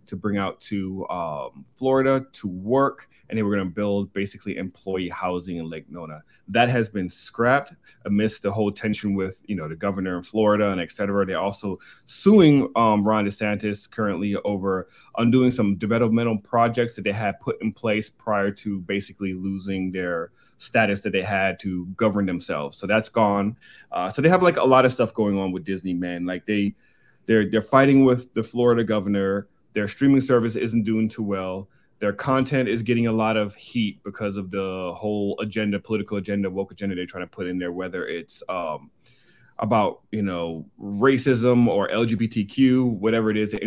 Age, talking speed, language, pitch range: 30-49, 190 wpm, English, 95-110 Hz